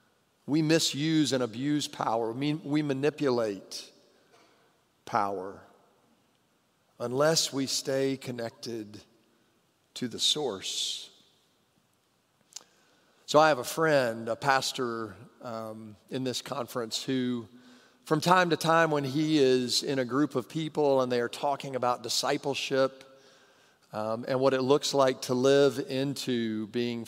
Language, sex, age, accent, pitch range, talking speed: English, male, 40-59, American, 120-160 Hz, 120 wpm